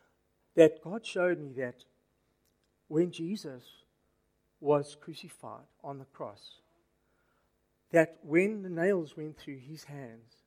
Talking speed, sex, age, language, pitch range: 115 wpm, male, 60-79, English, 115-165 Hz